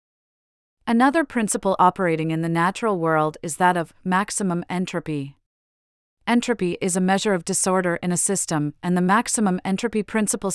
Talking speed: 150 wpm